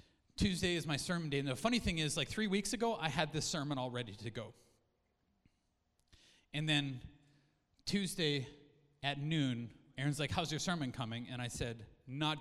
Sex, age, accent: male, 30-49, American